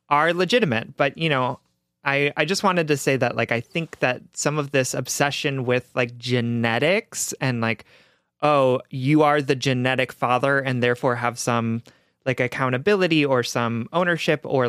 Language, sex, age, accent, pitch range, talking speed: English, male, 30-49, American, 125-165 Hz, 170 wpm